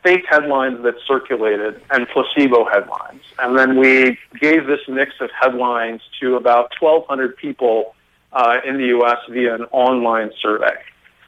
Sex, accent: male, American